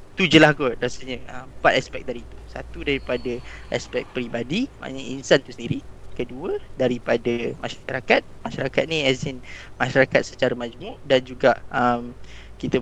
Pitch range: 125-145 Hz